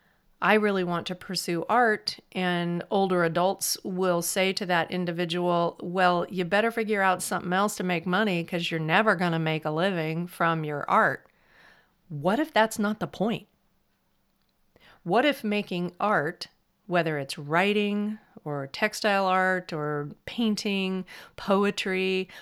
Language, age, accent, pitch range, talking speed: English, 40-59, American, 170-210 Hz, 145 wpm